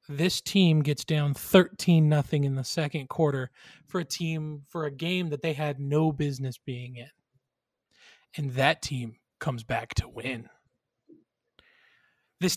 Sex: male